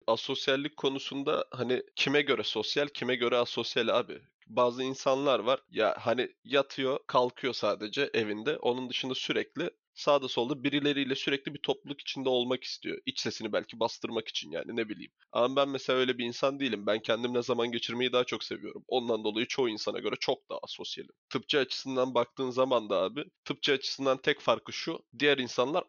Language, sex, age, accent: Turkish, male, 30-49, native